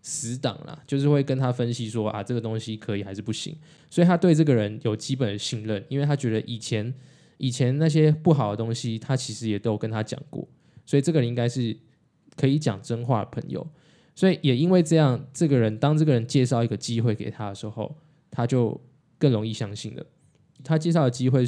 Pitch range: 115-145 Hz